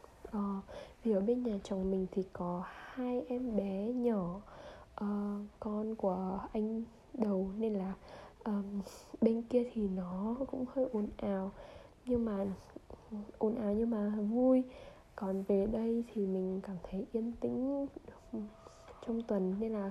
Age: 10-29